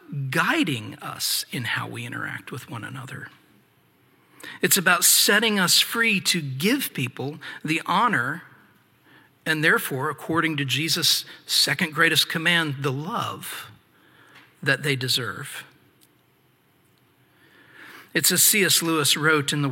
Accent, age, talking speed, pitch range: American, 50-69, 120 wpm, 135-165 Hz